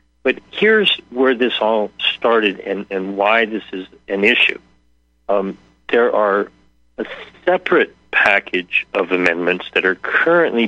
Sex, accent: male, American